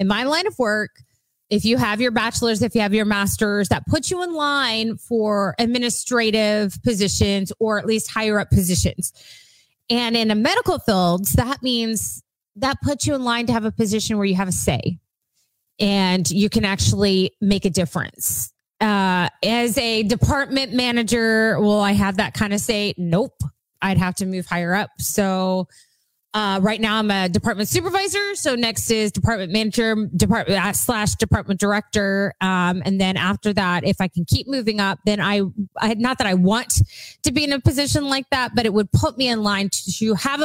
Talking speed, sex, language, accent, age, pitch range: 190 wpm, female, English, American, 20-39, 195-245 Hz